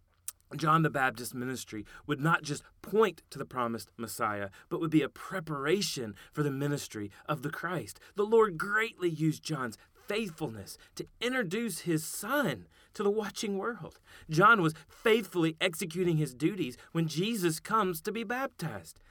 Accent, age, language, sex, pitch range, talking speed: American, 30-49, English, male, 150-205 Hz, 155 wpm